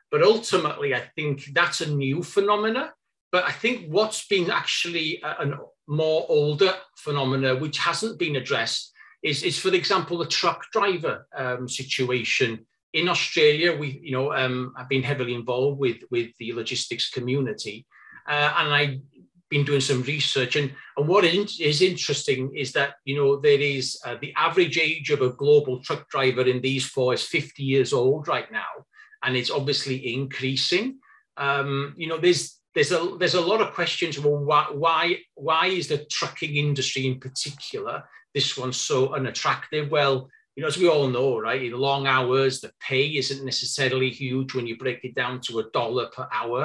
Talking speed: 180 wpm